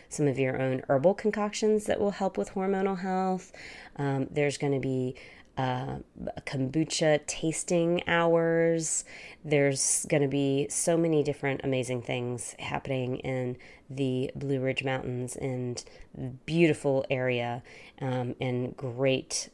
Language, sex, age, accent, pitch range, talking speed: English, female, 30-49, American, 130-155 Hz, 130 wpm